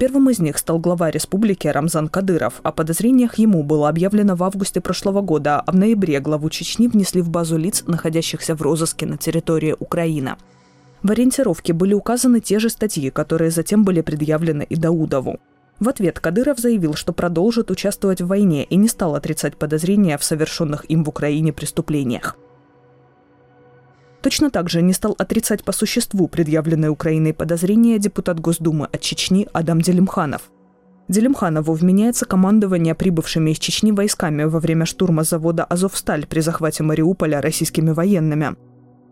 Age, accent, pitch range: 20-39, native, 155-195 Hz